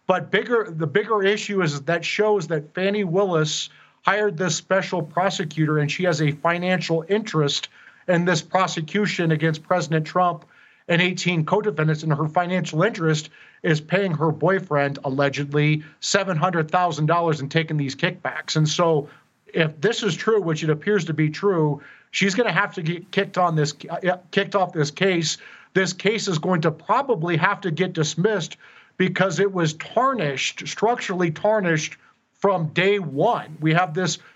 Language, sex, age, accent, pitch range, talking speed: English, male, 40-59, American, 160-195 Hz, 160 wpm